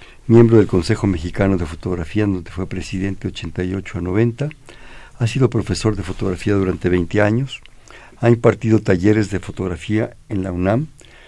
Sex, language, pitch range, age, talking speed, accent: male, Spanish, 90-110 Hz, 50-69, 150 wpm, Mexican